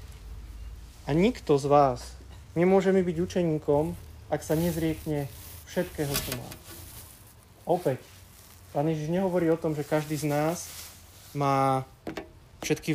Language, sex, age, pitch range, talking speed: Slovak, male, 20-39, 135-160 Hz, 120 wpm